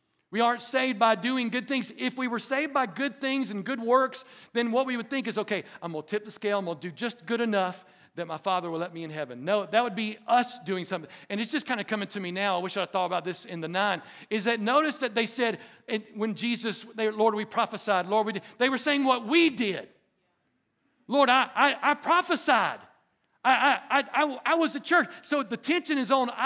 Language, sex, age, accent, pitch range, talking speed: English, male, 50-69, American, 200-265 Hz, 245 wpm